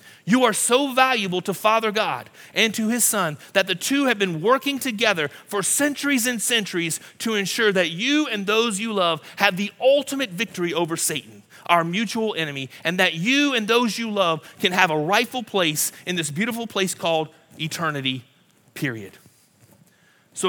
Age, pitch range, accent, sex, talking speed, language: 30-49, 150-205 Hz, American, male, 175 wpm, English